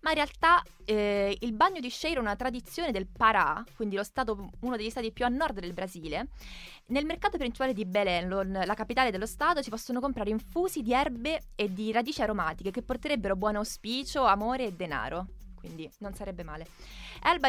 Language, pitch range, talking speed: Italian, 195-250 Hz, 190 wpm